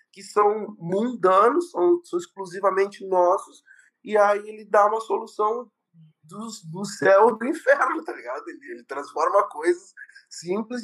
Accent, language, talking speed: Brazilian, Portuguese, 140 wpm